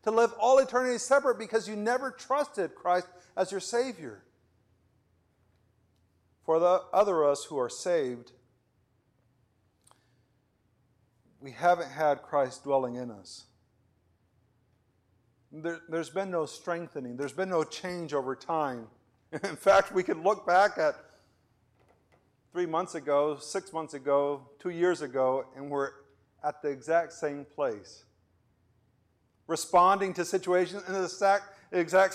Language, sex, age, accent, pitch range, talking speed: English, male, 50-69, American, 120-180 Hz, 125 wpm